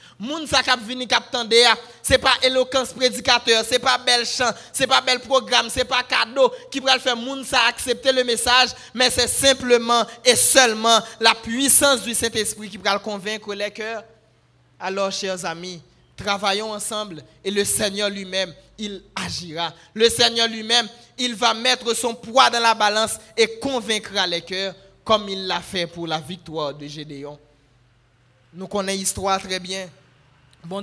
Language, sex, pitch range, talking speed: French, male, 200-255 Hz, 160 wpm